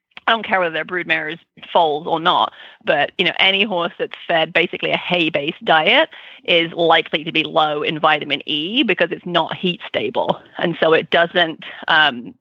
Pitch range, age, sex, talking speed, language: 165-190 Hz, 30-49, female, 180 wpm, English